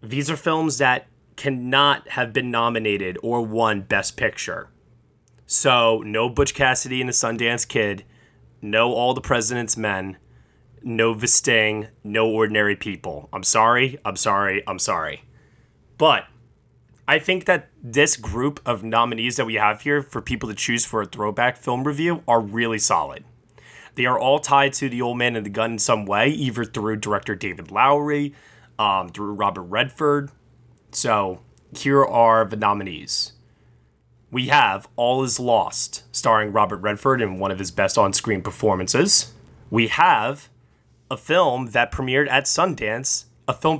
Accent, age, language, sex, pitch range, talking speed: American, 20-39, English, male, 110-135 Hz, 155 wpm